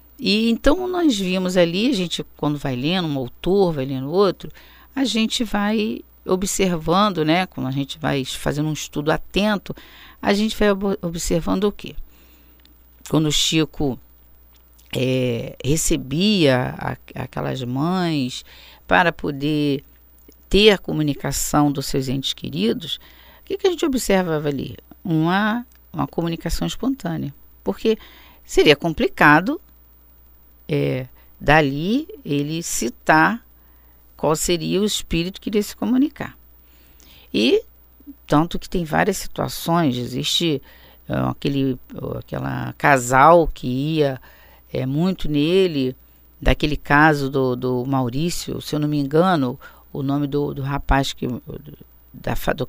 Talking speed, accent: 120 wpm, Brazilian